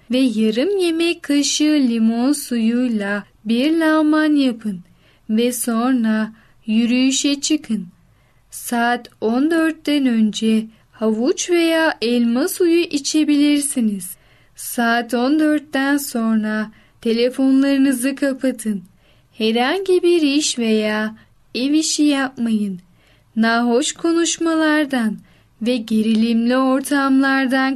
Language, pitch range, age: Turkish, 225-285 Hz, 10-29